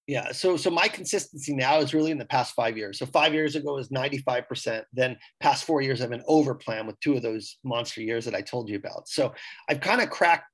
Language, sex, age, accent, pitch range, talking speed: English, male, 30-49, American, 135-160 Hz, 250 wpm